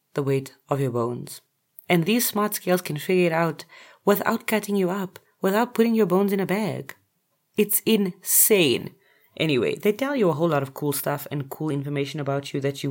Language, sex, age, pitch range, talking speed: English, female, 30-49, 140-185 Hz, 200 wpm